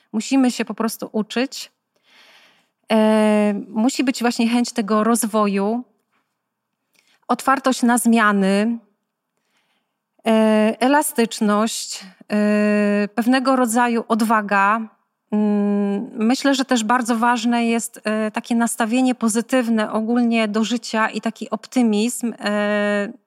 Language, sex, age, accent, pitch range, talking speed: Polish, female, 30-49, native, 220-245 Hz, 85 wpm